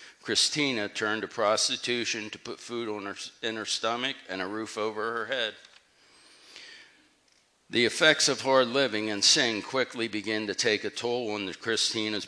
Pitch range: 110-125 Hz